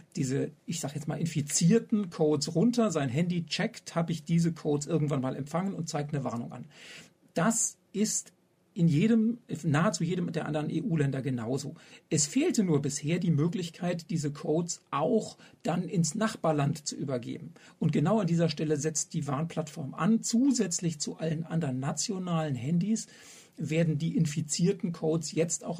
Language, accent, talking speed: German, German, 160 wpm